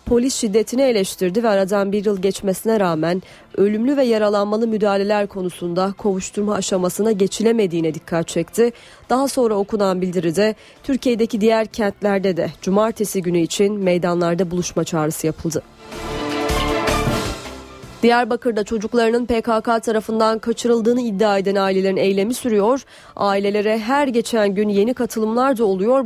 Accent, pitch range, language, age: native, 185-230 Hz, Turkish, 30-49